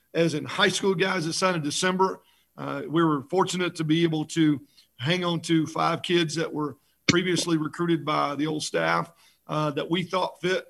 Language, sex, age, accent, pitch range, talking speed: English, male, 40-59, American, 155-175 Hz, 195 wpm